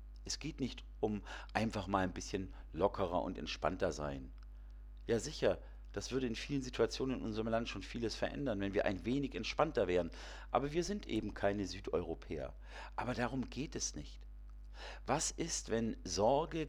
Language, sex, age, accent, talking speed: German, male, 50-69, German, 165 wpm